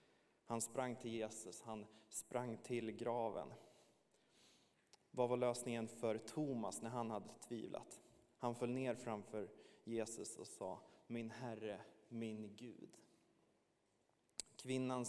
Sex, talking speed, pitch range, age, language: male, 115 wpm, 110-120 Hz, 20-39, Swedish